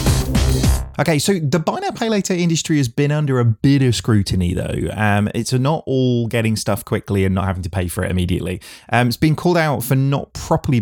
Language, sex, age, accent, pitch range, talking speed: English, male, 30-49, British, 95-125 Hz, 200 wpm